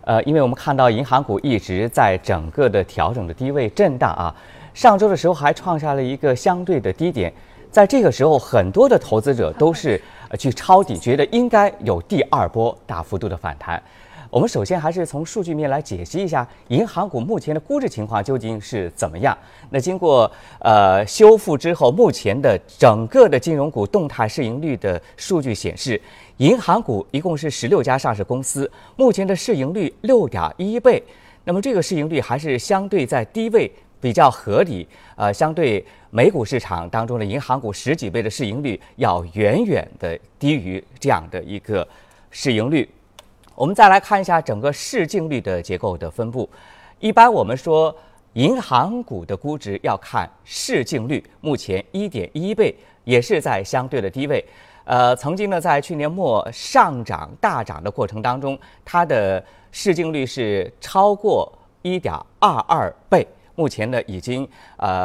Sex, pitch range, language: male, 110-175 Hz, Chinese